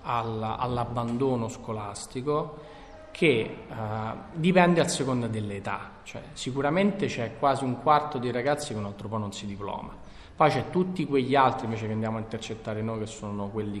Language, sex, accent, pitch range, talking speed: Italian, male, native, 105-130 Hz, 160 wpm